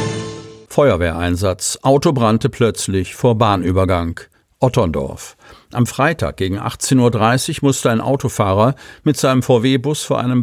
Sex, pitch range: male, 105-130 Hz